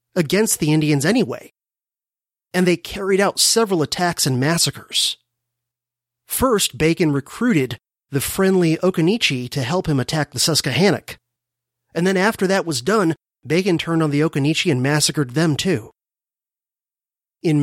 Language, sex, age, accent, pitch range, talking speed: English, male, 30-49, American, 135-185 Hz, 135 wpm